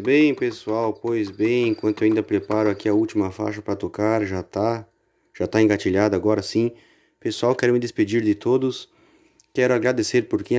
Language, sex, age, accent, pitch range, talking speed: Portuguese, male, 30-49, Brazilian, 100-115 Hz, 175 wpm